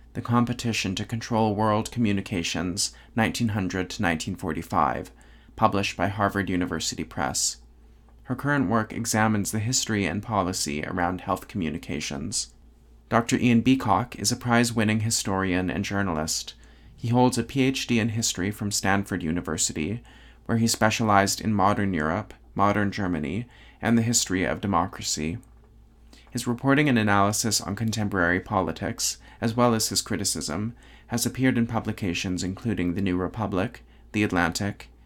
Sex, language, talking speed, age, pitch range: male, English, 135 wpm, 30-49, 90-110 Hz